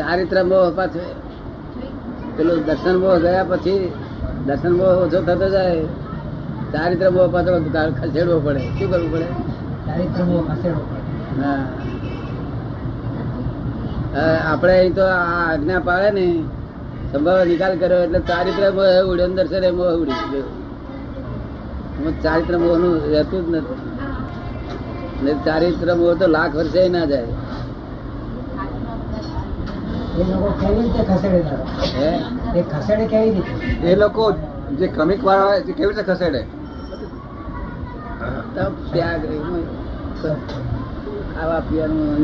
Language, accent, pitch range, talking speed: Gujarati, native, 140-180 Hz, 45 wpm